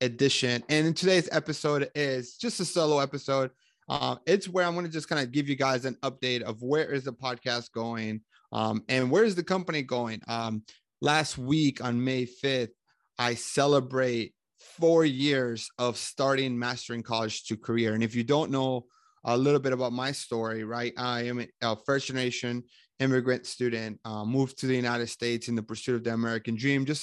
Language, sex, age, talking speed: English, male, 30-49, 190 wpm